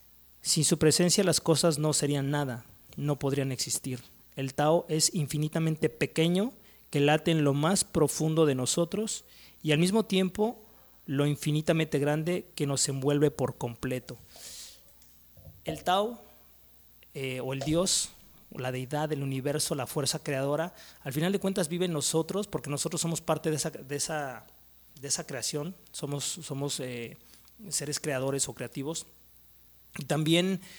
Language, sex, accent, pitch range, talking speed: Spanish, male, Mexican, 135-165 Hz, 150 wpm